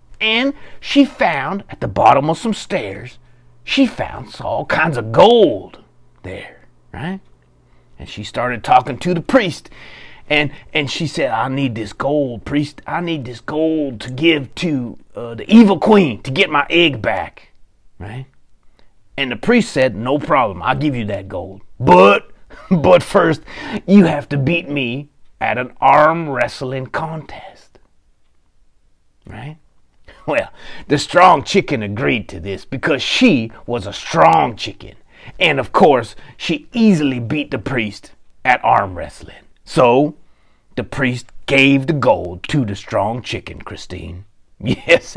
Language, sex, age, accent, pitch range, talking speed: English, male, 40-59, American, 115-180 Hz, 145 wpm